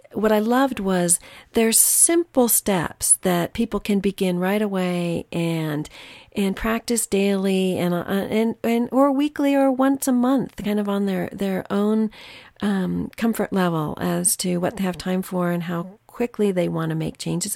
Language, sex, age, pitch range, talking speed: English, female, 40-59, 175-220 Hz, 170 wpm